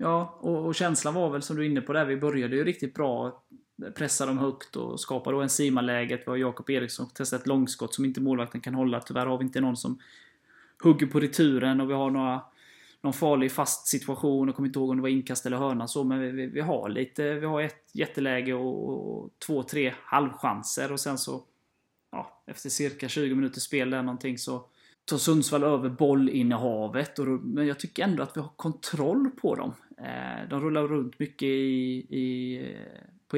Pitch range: 130-150 Hz